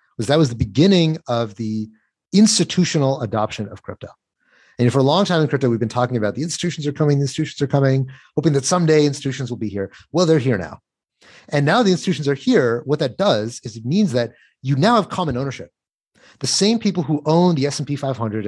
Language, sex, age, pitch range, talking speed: English, male, 30-49, 115-165 Hz, 215 wpm